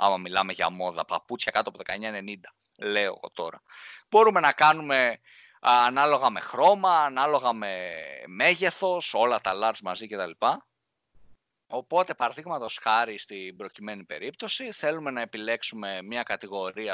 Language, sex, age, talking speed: Greek, male, 20-39, 135 wpm